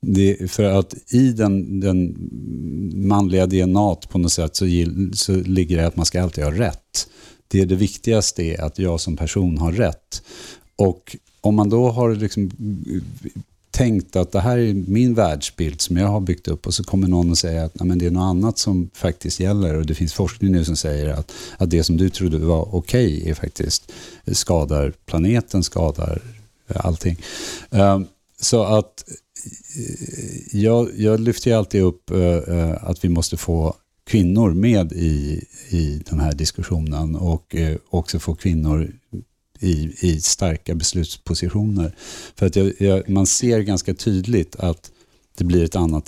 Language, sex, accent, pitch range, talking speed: English, male, Norwegian, 85-105 Hz, 170 wpm